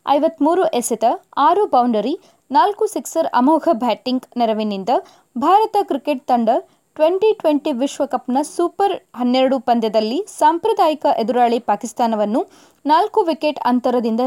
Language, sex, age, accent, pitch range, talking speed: Kannada, female, 20-39, native, 245-335 Hz, 100 wpm